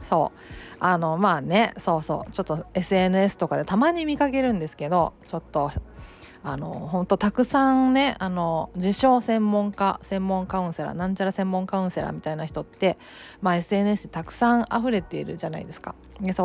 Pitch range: 170-210 Hz